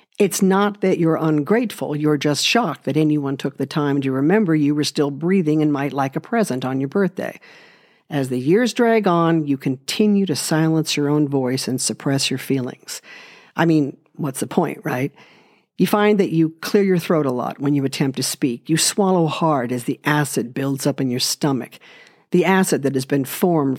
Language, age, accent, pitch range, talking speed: English, 50-69, American, 140-180 Hz, 200 wpm